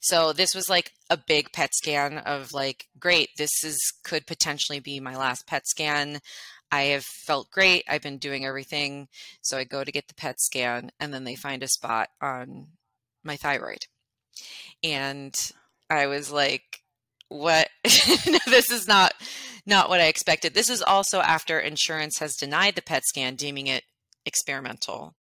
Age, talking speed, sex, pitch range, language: 30-49, 165 wpm, female, 135-165 Hz, English